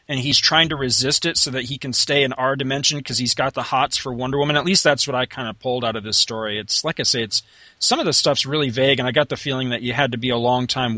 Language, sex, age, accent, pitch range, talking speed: English, male, 30-49, American, 125-165 Hz, 310 wpm